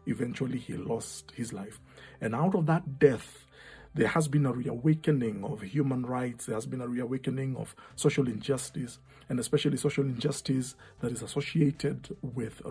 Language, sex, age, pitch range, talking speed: English, male, 50-69, 125-150 Hz, 160 wpm